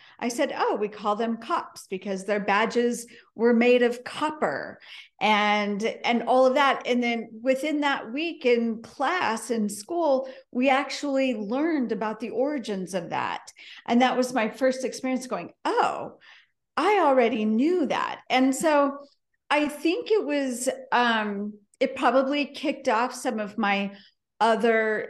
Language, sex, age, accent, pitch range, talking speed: English, female, 40-59, American, 210-260 Hz, 150 wpm